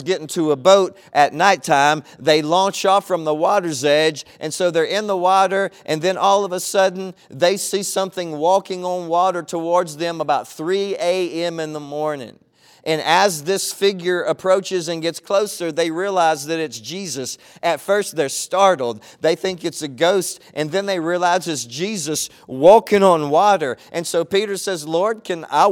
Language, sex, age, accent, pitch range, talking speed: English, male, 40-59, American, 160-195 Hz, 180 wpm